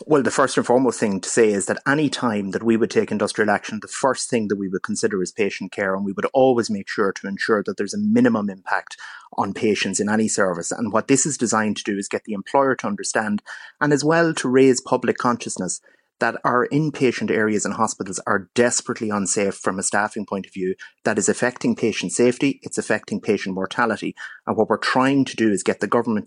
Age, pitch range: 30-49, 100-125 Hz